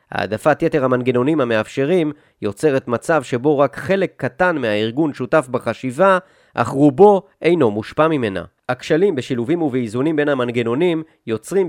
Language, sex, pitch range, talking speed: Hebrew, male, 125-160 Hz, 125 wpm